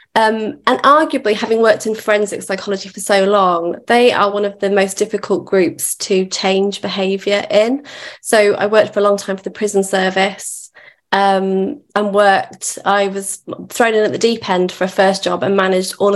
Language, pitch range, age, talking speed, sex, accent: English, 190-215 Hz, 20-39, 195 wpm, female, British